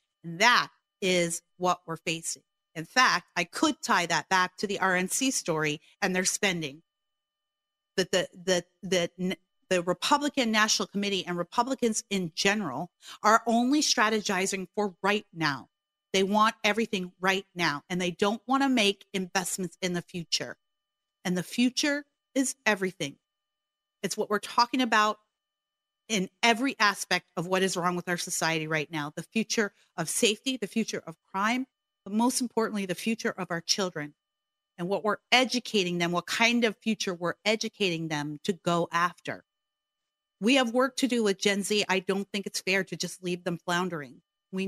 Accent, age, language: American, 40-59, English